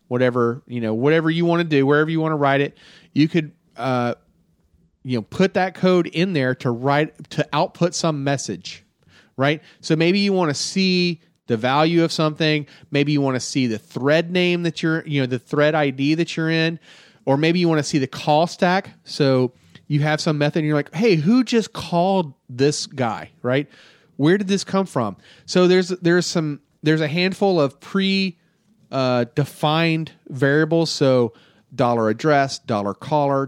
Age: 30-49